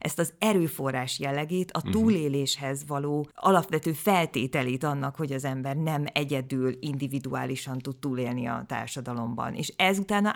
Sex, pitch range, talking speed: female, 140-170 Hz, 135 wpm